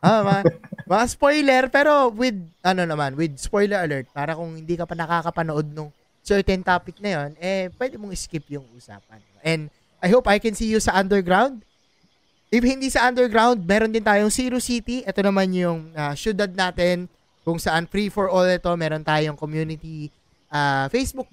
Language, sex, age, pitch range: Filipino, male, 20-39, 160-205 Hz